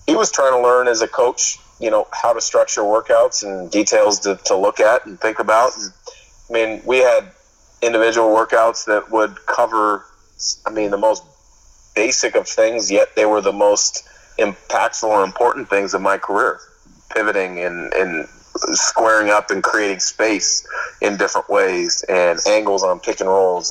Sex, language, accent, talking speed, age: male, English, American, 175 wpm, 30-49